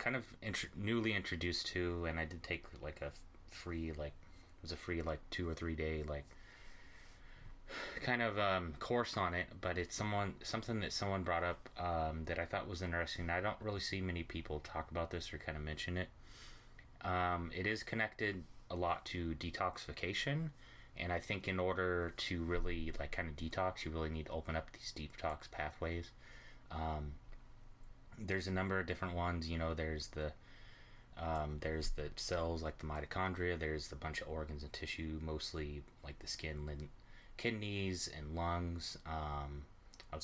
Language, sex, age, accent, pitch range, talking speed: English, male, 30-49, American, 80-95 Hz, 180 wpm